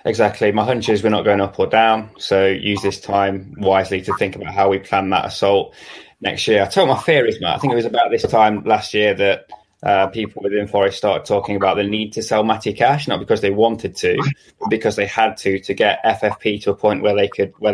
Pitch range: 100-115 Hz